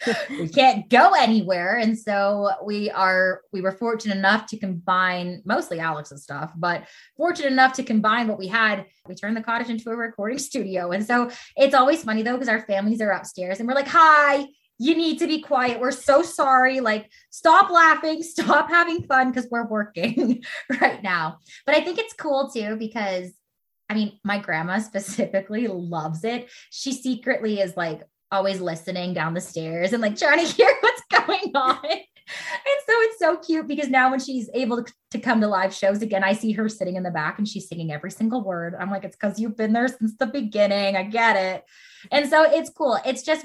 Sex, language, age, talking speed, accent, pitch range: female, English, 20-39, 205 wpm, American, 190-260 Hz